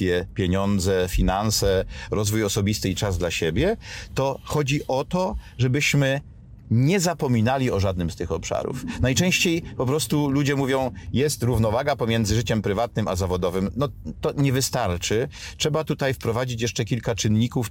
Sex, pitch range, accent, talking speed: male, 100-130 Hz, native, 140 wpm